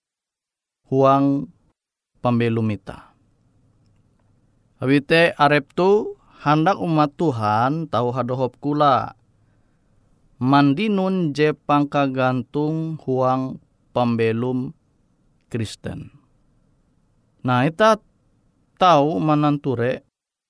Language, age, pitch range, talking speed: Indonesian, 30-49, 125-155 Hz, 60 wpm